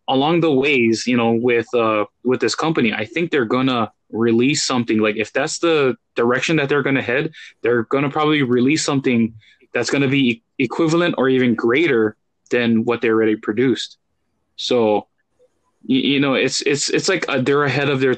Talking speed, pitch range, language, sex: 190 wpm, 115-140 Hz, English, male